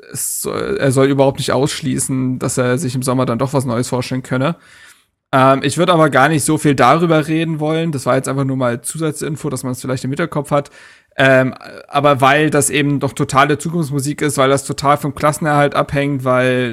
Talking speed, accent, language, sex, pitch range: 205 wpm, German, German, male, 130-160 Hz